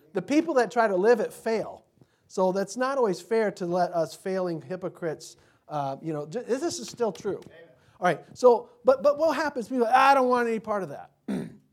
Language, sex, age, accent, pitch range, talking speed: English, male, 40-59, American, 155-235 Hz, 215 wpm